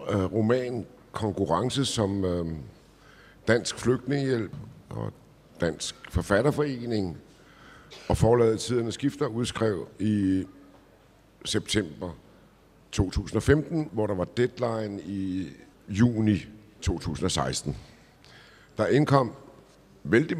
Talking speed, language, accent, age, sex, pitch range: 75 wpm, Danish, native, 60-79, male, 90-120 Hz